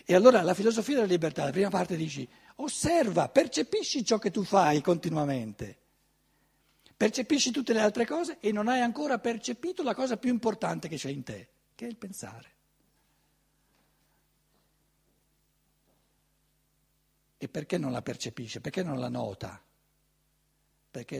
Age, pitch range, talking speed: 60-79, 160-235 Hz, 140 wpm